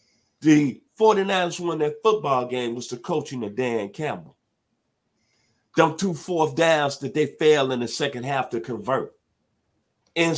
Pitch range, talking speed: 125-175 Hz, 150 wpm